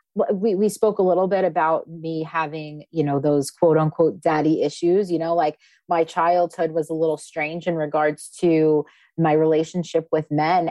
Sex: female